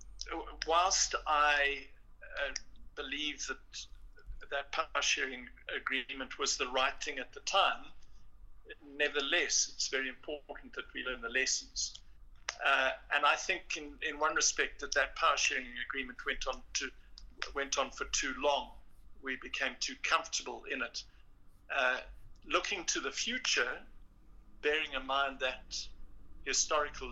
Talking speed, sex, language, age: 135 wpm, male, English, 60-79